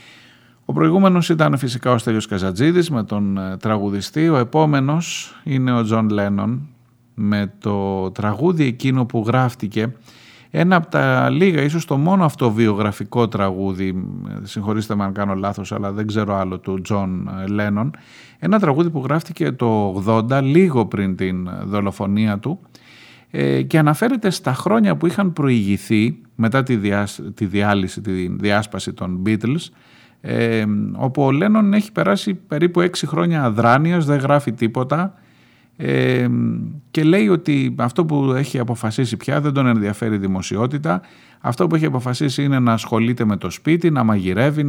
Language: Greek